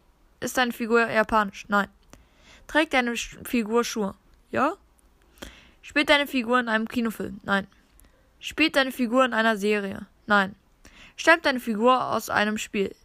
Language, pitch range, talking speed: German, 200-250 Hz, 145 wpm